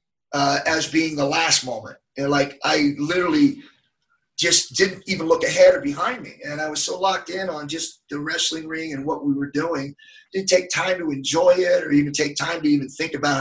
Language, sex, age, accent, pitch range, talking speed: English, male, 30-49, American, 145-195 Hz, 215 wpm